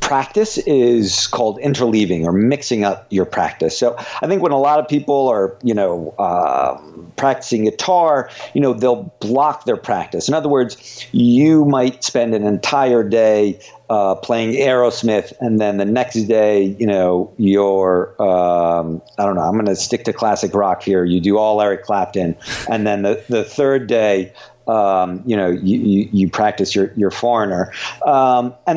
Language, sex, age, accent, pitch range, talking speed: English, male, 50-69, American, 110-150 Hz, 170 wpm